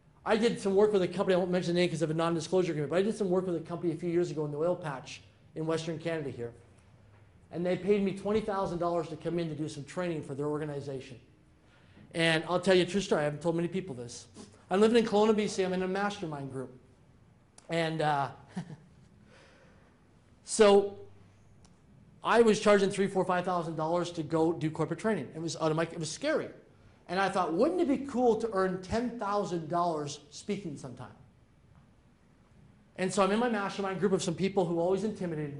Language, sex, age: English, male, 40-59